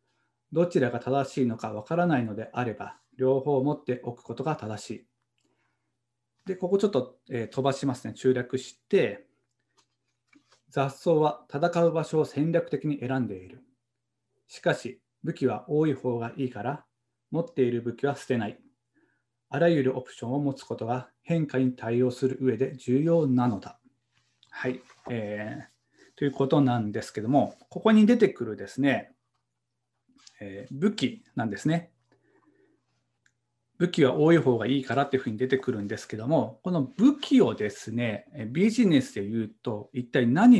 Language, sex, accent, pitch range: Japanese, male, native, 120-155 Hz